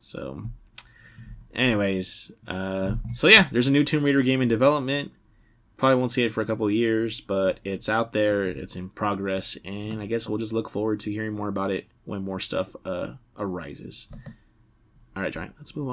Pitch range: 105-140 Hz